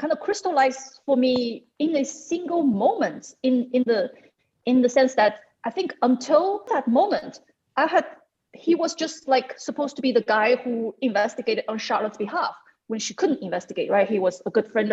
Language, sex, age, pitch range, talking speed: English, female, 30-49, 210-270 Hz, 190 wpm